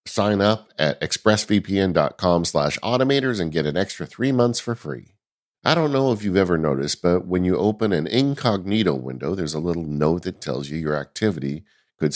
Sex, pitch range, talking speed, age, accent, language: male, 80-115 Hz, 185 wpm, 50-69, American, English